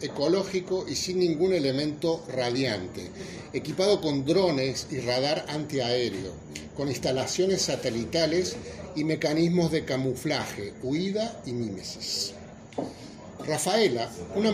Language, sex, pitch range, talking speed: Spanish, male, 125-175 Hz, 100 wpm